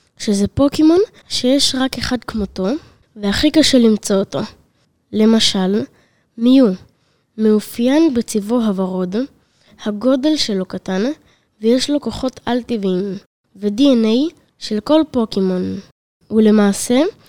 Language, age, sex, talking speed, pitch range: Hebrew, 20-39, female, 95 wpm, 205-270 Hz